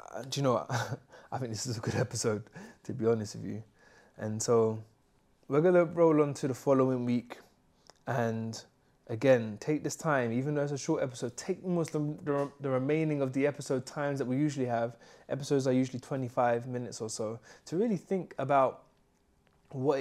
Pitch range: 125-155 Hz